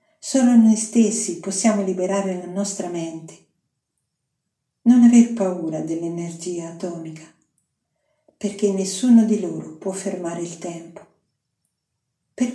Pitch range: 170-205 Hz